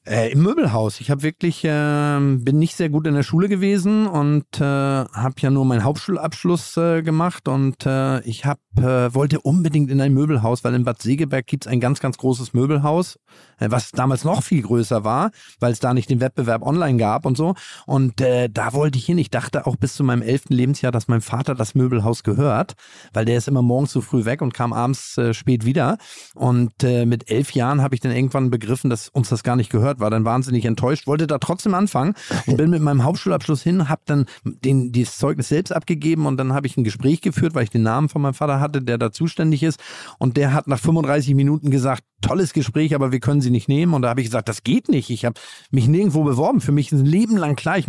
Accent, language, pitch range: German, German, 125-150 Hz